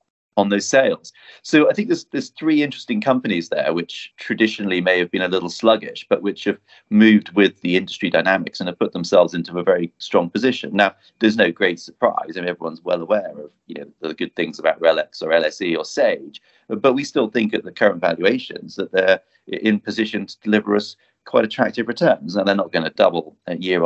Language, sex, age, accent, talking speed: English, male, 30-49, British, 210 wpm